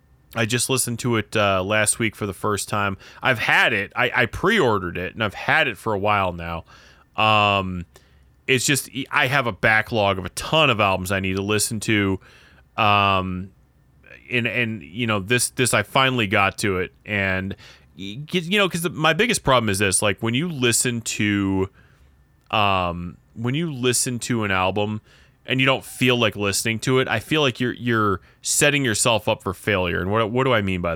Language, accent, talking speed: English, American, 200 wpm